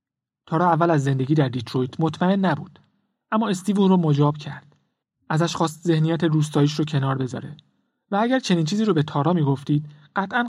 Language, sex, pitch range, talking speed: Persian, male, 140-170 Hz, 170 wpm